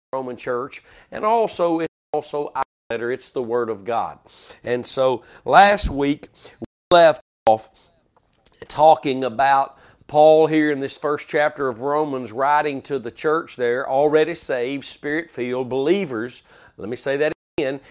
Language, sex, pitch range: English, male, 135-175 Hz